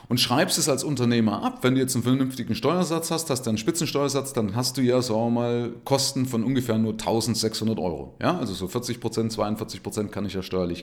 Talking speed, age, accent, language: 220 wpm, 30-49, German, German